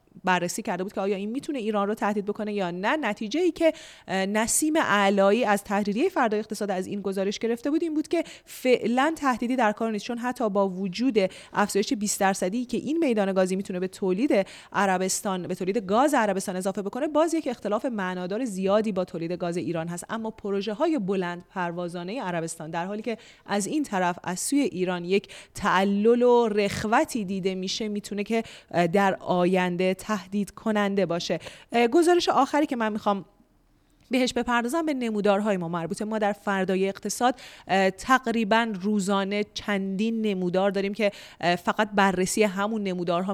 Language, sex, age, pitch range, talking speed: Persian, female, 30-49, 190-230 Hz, 165 wpm